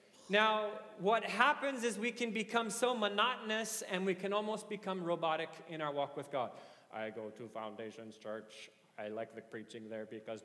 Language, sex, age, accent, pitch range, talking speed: English, male, 30-49, American, 160-260 Hz, 180 wpm